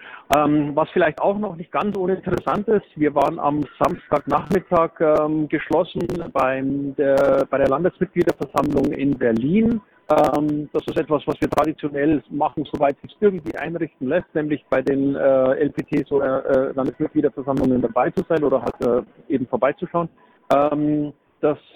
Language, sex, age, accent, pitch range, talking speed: German, male, 50-69, German, 135-160 Hz, 145 wpm